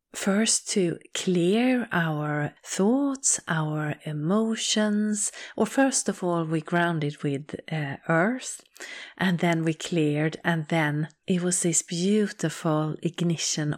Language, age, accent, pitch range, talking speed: English, 30-49, Swedish, 155-185 Hz, 120 wpm